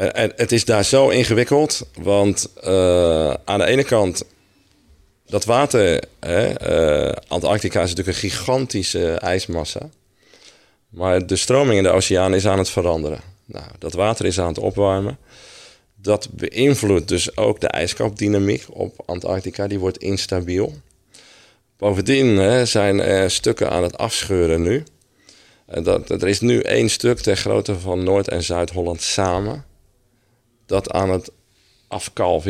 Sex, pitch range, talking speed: male, 85-110 Hz, 135 wpm